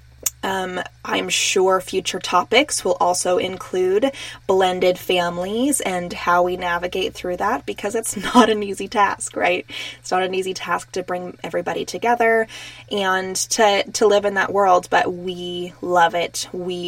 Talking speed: 155 wpm